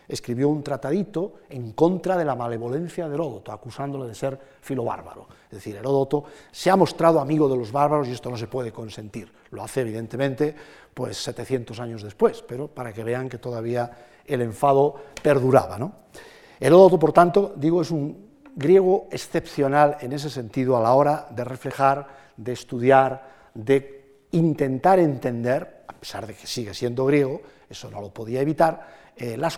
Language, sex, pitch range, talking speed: Spanish, male, 125-160 Hz, 165 wpm